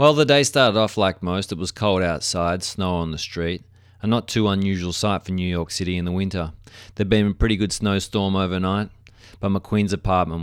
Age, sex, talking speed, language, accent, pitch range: 30-49, male, 215 wpm, English, Australian, 85-105 Hz